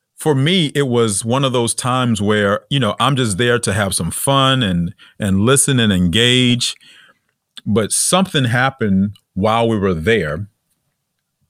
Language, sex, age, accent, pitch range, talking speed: English, male, 40-59, American, 100-140 Hz, 155 wpm